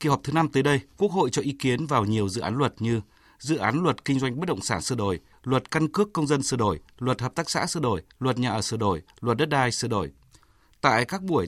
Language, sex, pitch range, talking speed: Vietnamese, male, 120-170 Hz, 275 wpm